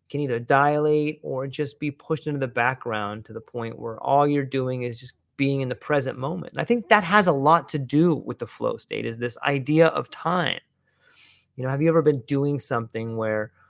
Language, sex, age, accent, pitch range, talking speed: English, male, 30-49, American, 130-165 Hz, 225 wpm